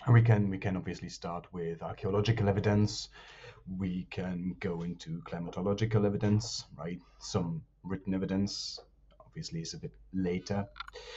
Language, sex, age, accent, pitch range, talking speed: English, male, 30-49, German, 90-115 Hz, 135 wpm